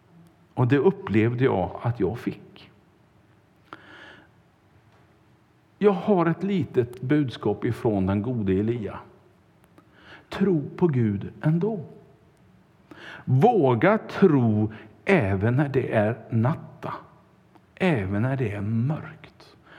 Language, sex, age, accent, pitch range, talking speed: Swedish, male, 60-79, Norwegian, 115-165 Hz, 95 wpm